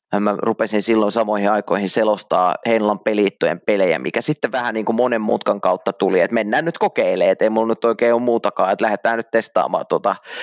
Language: Finnish